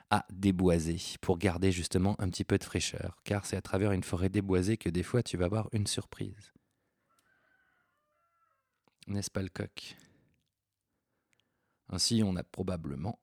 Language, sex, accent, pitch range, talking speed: French, male, French, 95-120 Hz, 150 wpm